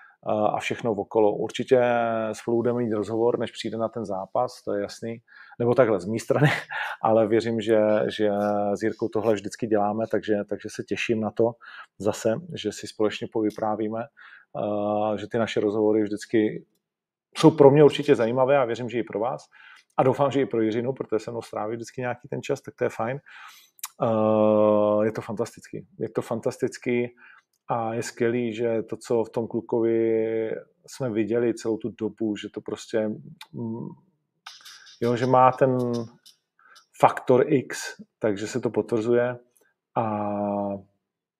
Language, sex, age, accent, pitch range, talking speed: Czech, male, 40-59, native, 105-120 Hz, 160 wpm